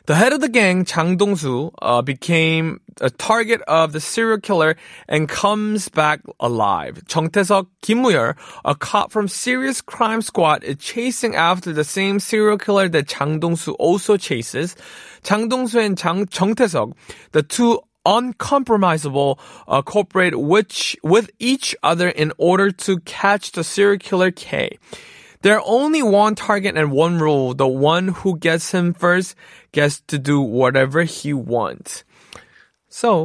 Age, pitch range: 20-39, 145-205 Hz